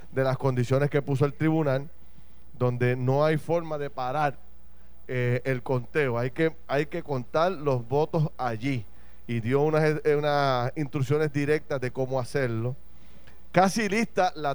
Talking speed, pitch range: 140 wpm, 130-155 Hz